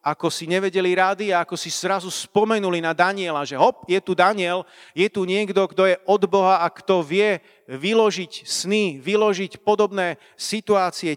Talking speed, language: 165 wpm, Slovak